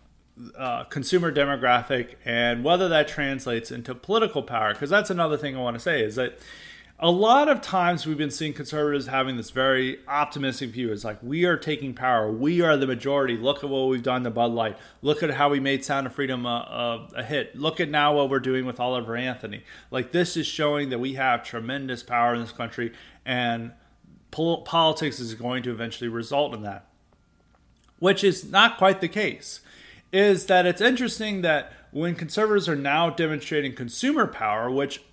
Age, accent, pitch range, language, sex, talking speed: 30-49, American, 125-160 Hz, English, male, 190 wpm